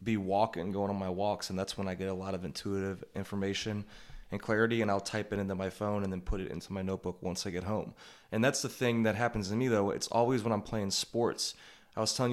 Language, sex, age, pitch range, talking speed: English, male, 20-39, 100-115 Hz, 265 wpm